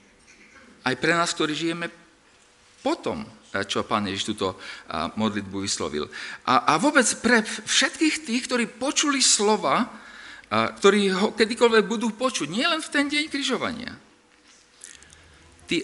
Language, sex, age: Slovak, male, 50-69